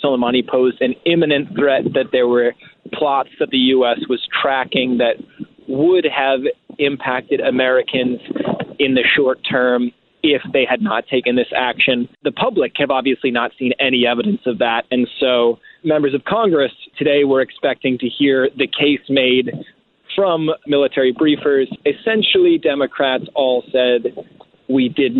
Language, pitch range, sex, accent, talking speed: English, 125-145 Hz, male, American, 150 wpm